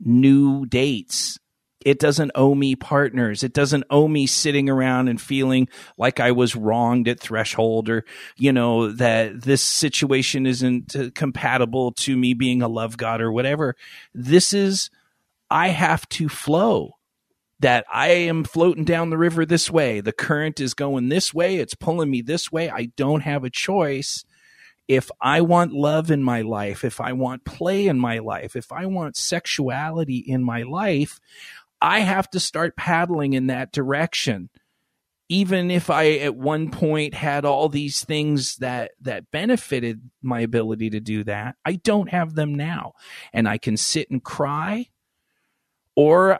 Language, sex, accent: English, male, American